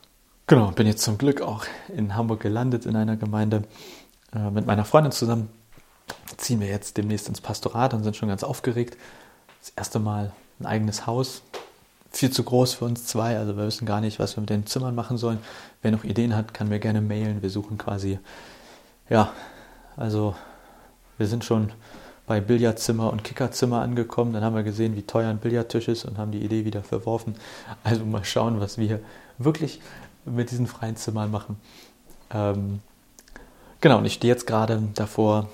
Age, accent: 30-49, German